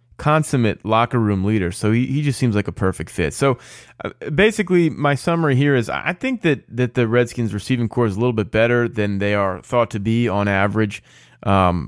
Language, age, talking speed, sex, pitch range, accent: English, 20-39, 210 wpm, male, 100-135 Hz, American